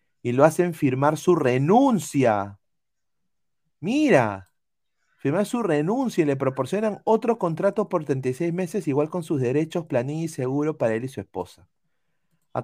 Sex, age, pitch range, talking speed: male, 30-49, 120-165 Hz, 145 wpm